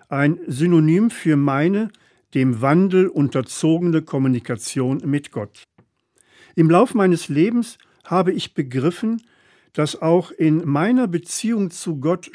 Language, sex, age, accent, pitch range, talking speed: German, male, 50-69, German, 130-175 Hz, 115 wpm